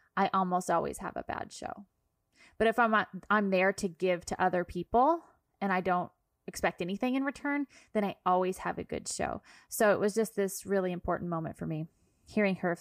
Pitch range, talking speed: 180-245 Hz, 205 wpm